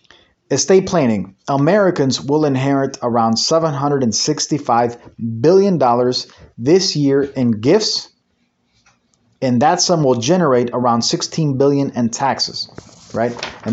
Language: English